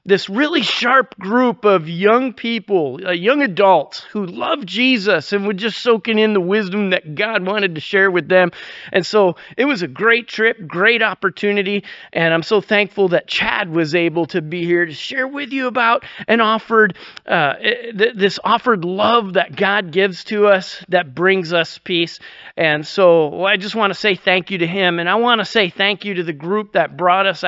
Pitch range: 175-210 Hz